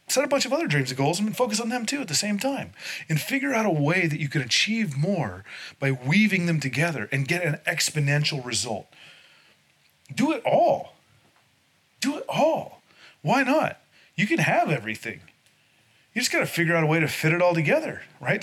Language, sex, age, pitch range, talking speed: English, male, 30-49, 130-180 Hz, 200 wpm